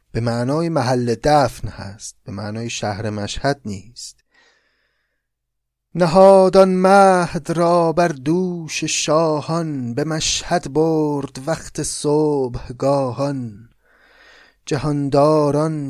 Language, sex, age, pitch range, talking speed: Persian, male, 30-49, 130-160 Hz, 85 wpm